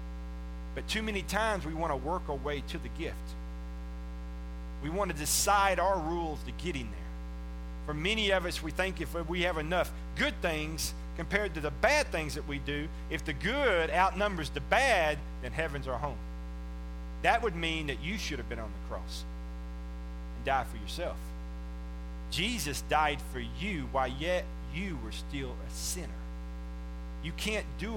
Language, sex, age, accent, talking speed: English, male, 40-59, American, 175 wpm